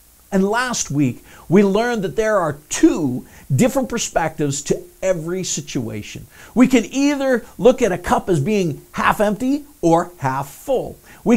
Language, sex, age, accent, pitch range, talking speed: English, male, 50-69, American, 140-225 Hz, 155 wpm